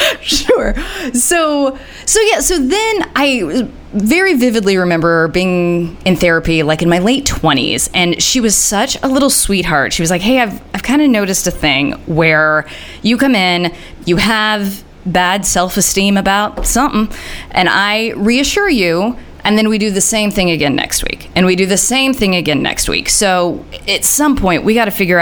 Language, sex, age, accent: English, female, 20-39, American